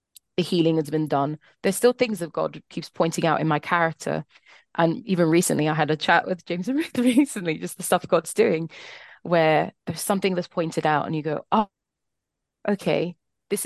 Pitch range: 160-195 Hz